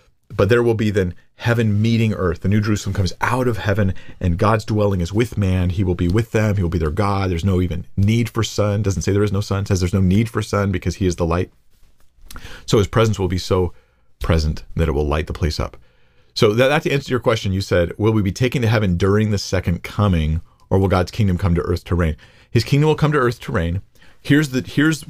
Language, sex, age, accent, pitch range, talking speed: English, male, 40-59, American, 85-110 Hz, 255 wpm